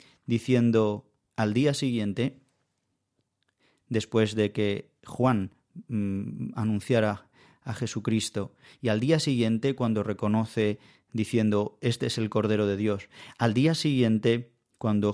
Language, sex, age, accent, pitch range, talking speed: Spanish, male, 30-49, Spanish, 105-125 Hz, 110 wpm